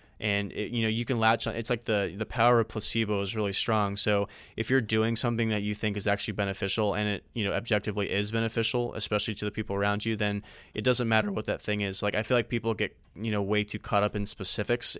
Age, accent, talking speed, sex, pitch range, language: 20-39, American, 250 wpm, male, 100-110 Hz, English